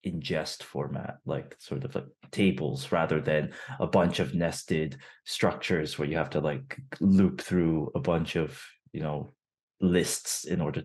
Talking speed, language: 160 wpm, English